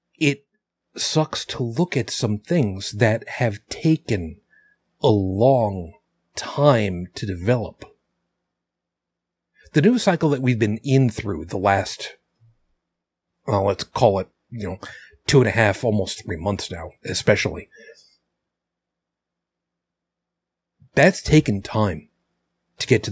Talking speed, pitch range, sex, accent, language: 115 wpm, 100-135 Hz, male, American, English